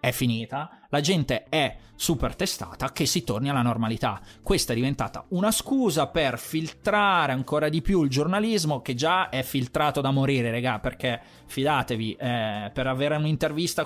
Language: Italian